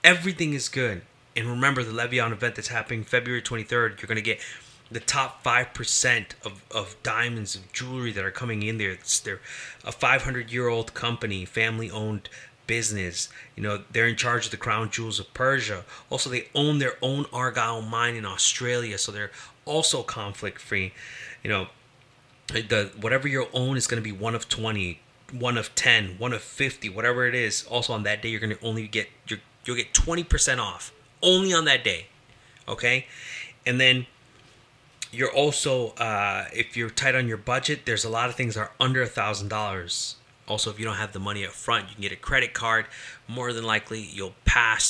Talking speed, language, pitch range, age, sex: 200 wpm, English, 110-125 Hz, 30-49, male